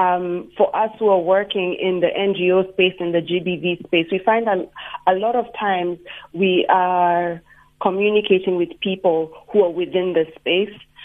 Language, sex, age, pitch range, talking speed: English, female, 40-59, 180-210 Hz, 170 wpm